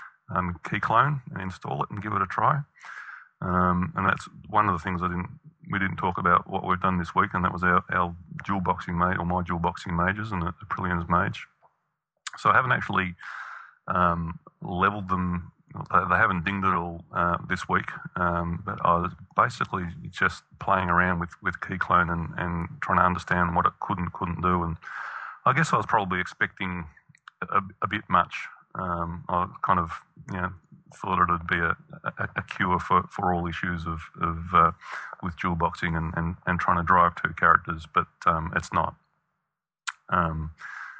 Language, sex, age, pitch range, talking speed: English, male, 30-49, 85-95 Hz, 195 wpm